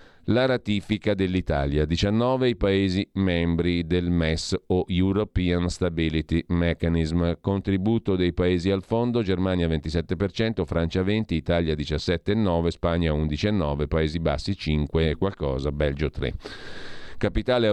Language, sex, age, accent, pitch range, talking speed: Italian, male, 40-59, native, 85-110 Hz, 115 wpm